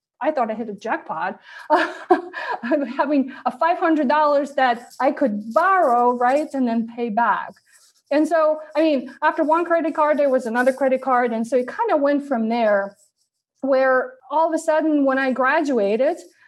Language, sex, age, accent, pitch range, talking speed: English, female, 20-39, American, 230-305 Hz, 175 wpm